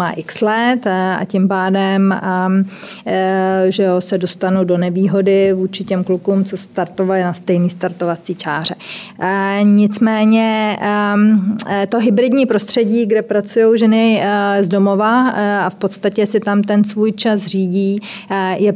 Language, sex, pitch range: Czech, female, 190-215 Hz